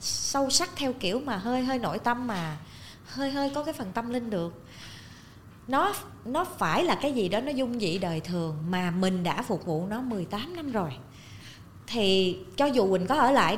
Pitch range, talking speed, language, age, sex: 170-260 Hz, 205 wpm, Vietnamese, 20-39, female